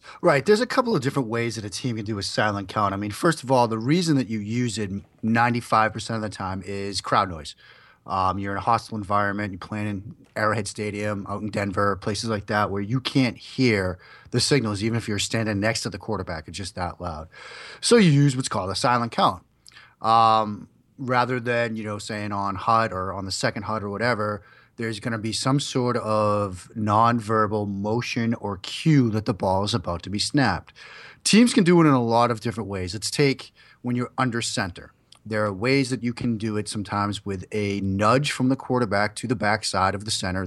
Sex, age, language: male, 30-49, English